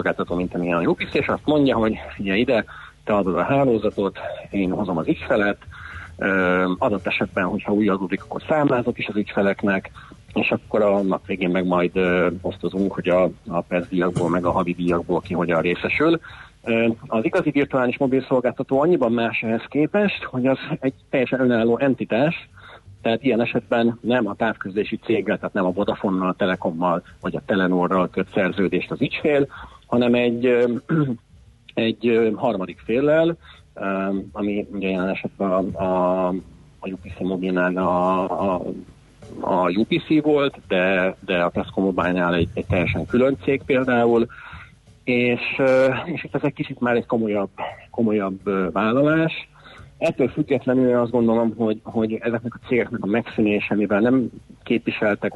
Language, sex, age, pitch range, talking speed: Hungarian, male, 40-59, 95-125 Hz, 140 wpm